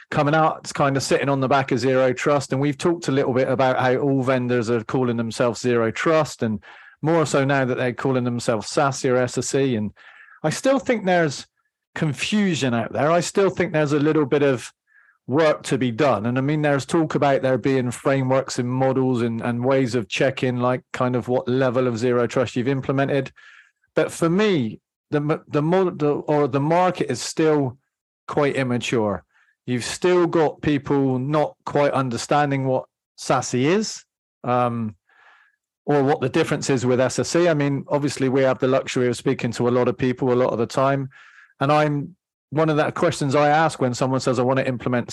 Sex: male